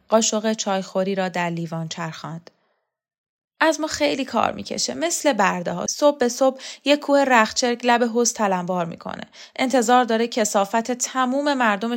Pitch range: 185-250 Hz